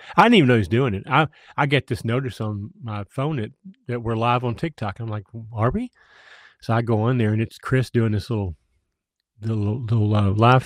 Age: 40-59